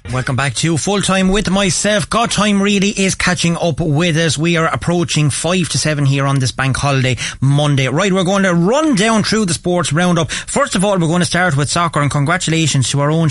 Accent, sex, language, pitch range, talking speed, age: Irish, male, English, 130-170 Hz, 230 wpm, 30-49